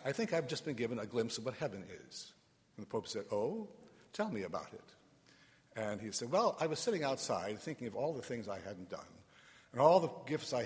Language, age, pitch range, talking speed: English, 60-79, 110-155 Hz, 235 wpm